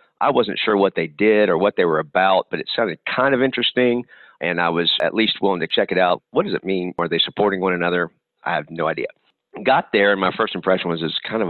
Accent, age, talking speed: American, 50-69, 260 wpm